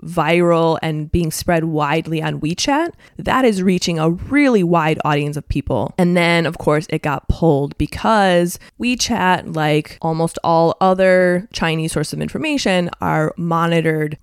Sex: female